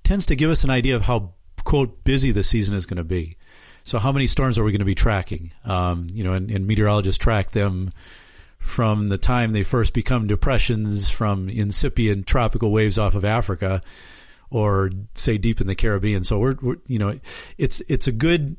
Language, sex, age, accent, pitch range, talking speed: English, male, 40-59, American, 100-130 Hz, 205 wpm